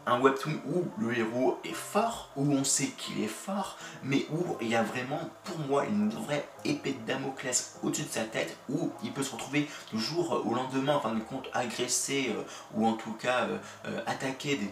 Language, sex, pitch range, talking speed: French, male, 115-150 Hz, 210 wpm